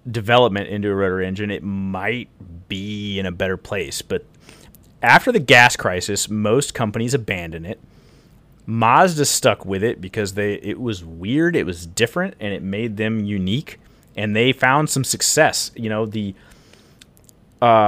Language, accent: English, American